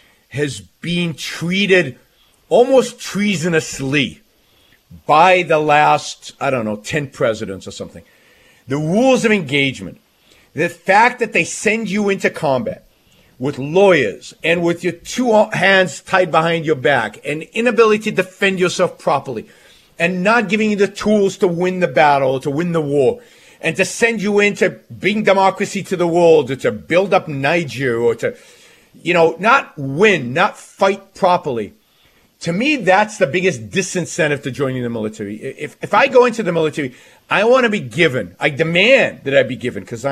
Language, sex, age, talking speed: English, male, 50-69, 170 wpm